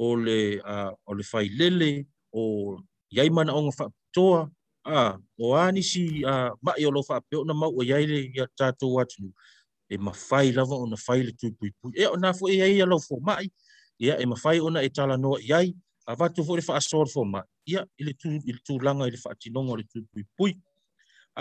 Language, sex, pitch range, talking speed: English, male, 115-170 Hz, 195 wpm